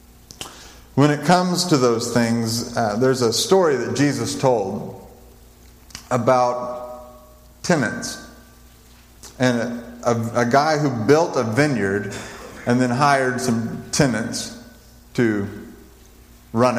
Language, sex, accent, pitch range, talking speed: English, male, American, 110-125 Hz, 110 wpm